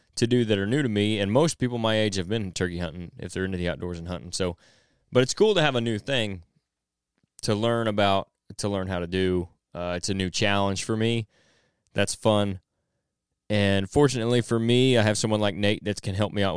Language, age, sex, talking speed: English, 20-39, male, 230 wpm